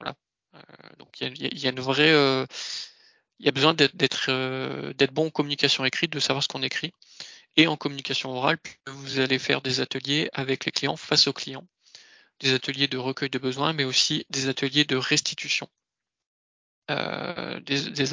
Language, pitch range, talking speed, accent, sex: French, 135-160 Hz, 175 wpm, French, male